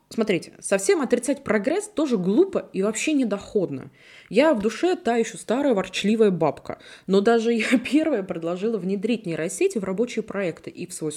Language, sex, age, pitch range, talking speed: Russian, female, 20-39, 170-235 Hz, 160 wpm